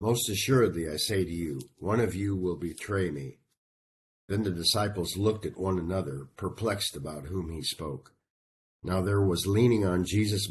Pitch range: 75-100 Hz